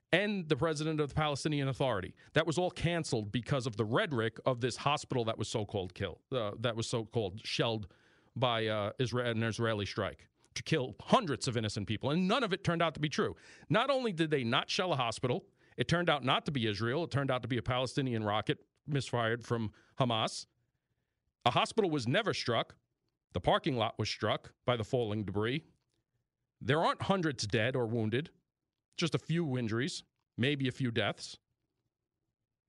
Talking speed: 190 wpm